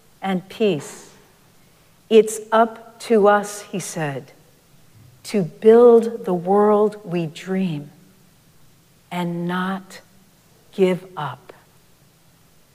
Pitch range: 160-200 Hz